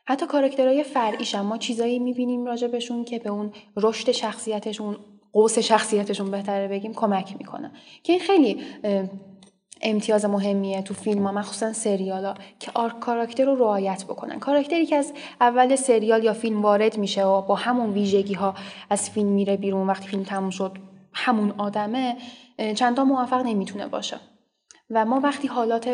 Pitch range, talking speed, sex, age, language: 195-240 Hz, 150 wpm, female, 10-29, Persian